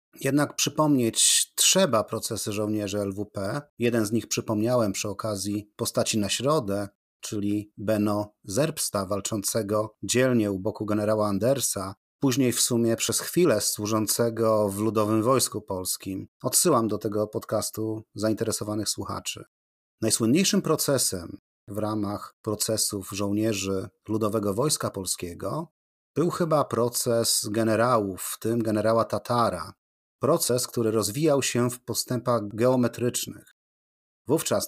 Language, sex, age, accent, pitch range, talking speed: Polish, male, 40-59, native, 105-125 Hz, 110 wpm